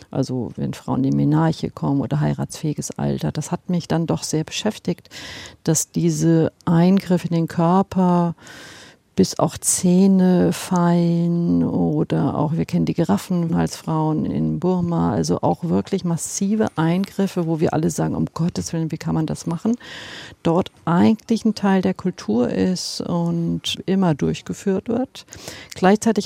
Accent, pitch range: German, 145-185 Hz